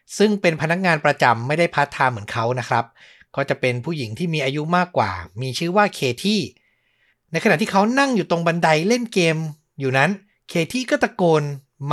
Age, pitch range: 60-79, 140-195 Hz